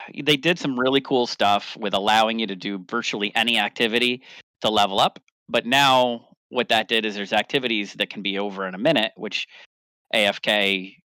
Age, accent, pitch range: 30-49, American, 95-120 Hz